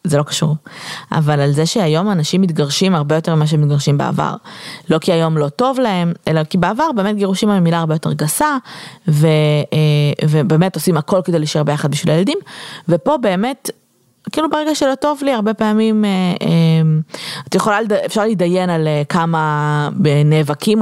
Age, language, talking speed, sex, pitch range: 20-39, Hebrew, 165 wpm, female, 160-220 Hz